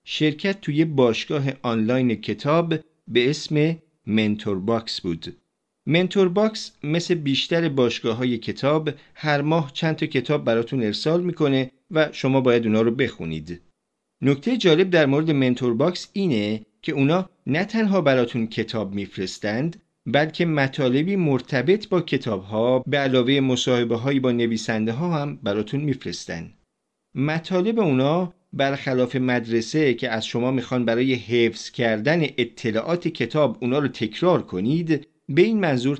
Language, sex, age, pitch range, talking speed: Persian, male, 40-59, 115-160 Hz, 130 wpm